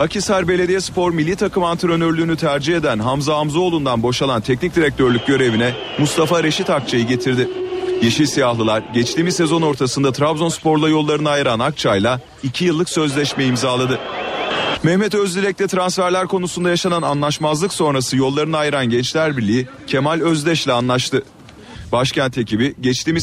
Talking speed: 120 wpm